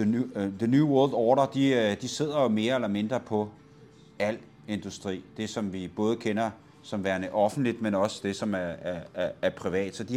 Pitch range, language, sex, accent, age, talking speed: 115-160 Hz, Danish, male, native, 30-49, 210 wpm